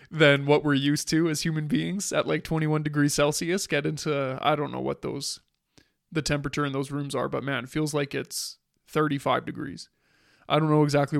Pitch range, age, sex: 140-150 Hz, 20-39, male